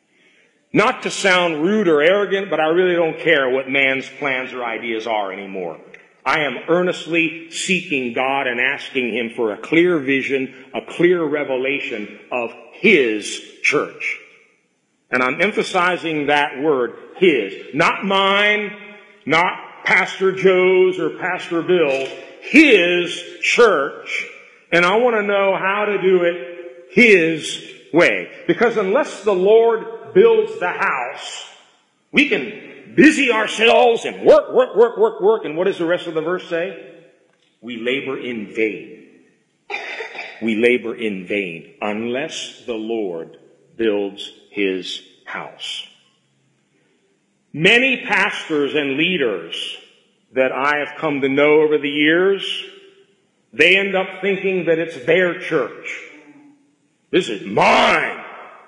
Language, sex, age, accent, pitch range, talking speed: English, male, 50-69, American, 140-215 Hz, 130 wpm